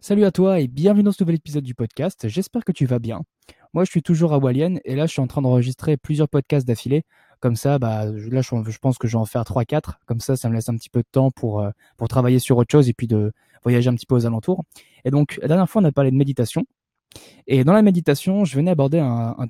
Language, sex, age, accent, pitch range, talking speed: French, male, 20-39, French, 120-150 Hz, 270 wpm